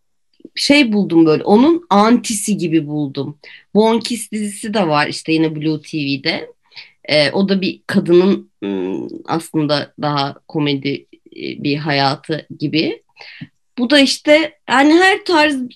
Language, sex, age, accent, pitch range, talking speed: Turkish, female, 30-49, native, 160-245 Hz, 120 wpm